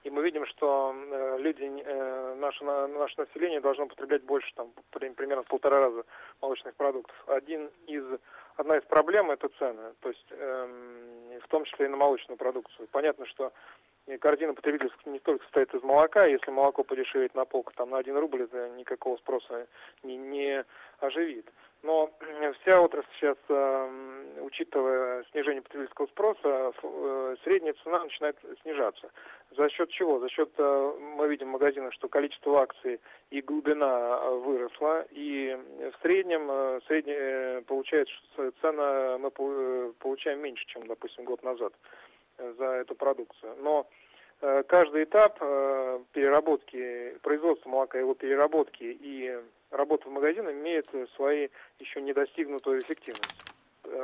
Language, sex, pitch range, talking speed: Russian, male, 130-155 Hz, 140 wpm